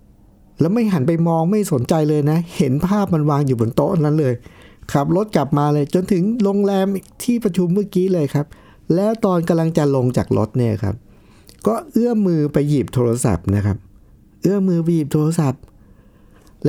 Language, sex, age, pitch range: Thai, male, 60-79, 105-170 Hz